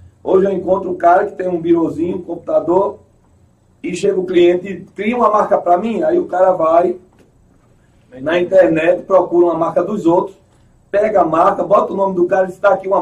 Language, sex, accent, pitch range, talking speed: Portuguese, male, Brazilian, 150-205 Hz, 200 wpm